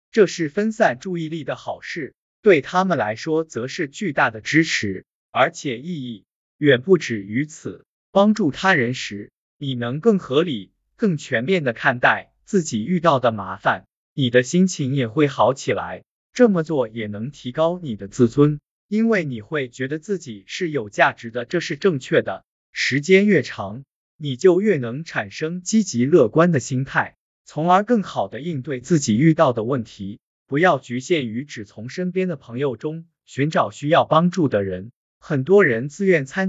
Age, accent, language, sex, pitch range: 20-39, native, Chinese, male, 120-180 Hz